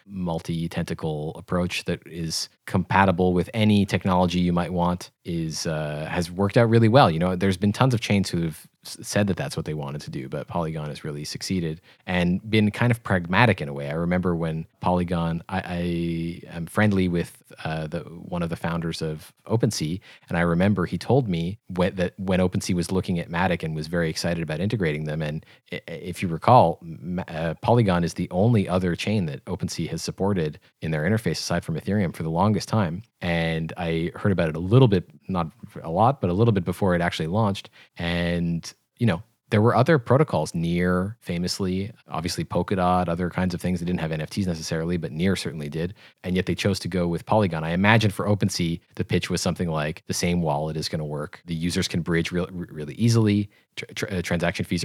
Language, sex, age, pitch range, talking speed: English, male, 30-49, 85-100 Hz, 205 wpm